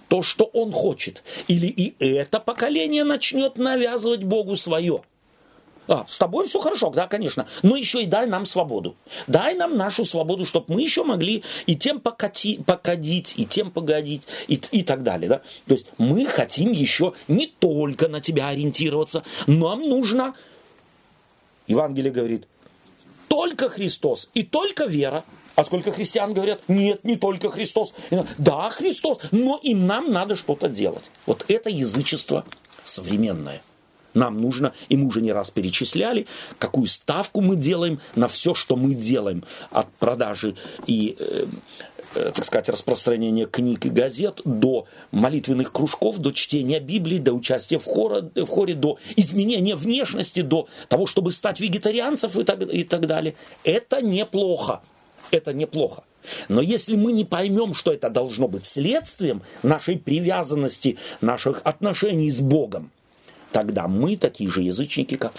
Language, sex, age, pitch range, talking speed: Russian, male, 40-59, 150-230 Hz, 150 wpm